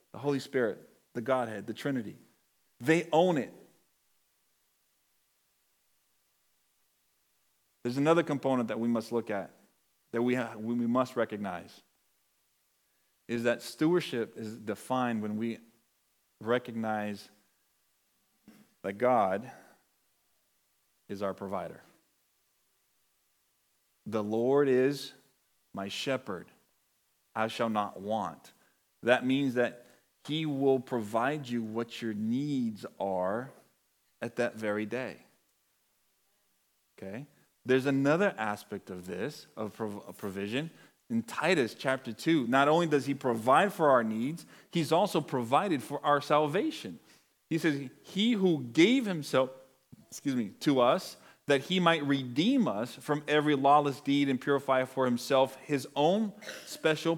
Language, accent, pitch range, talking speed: English, American, 115-150 Hz, 120 wpm